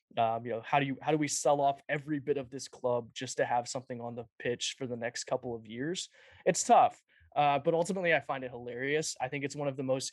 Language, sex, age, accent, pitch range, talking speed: English, male, 20-39, American, 125-145 Hz, 265 wpm